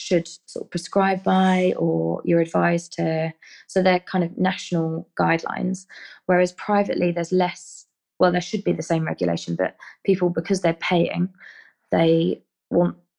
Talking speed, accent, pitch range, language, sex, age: 150 wpm, British, 165-195 Hz, English, female, 20-39